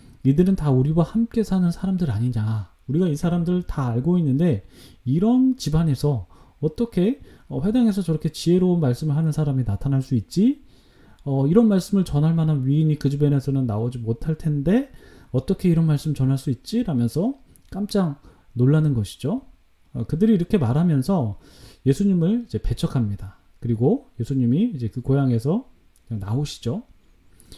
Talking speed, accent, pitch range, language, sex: 125 wpm, Korean, 120-185 Hz, English, male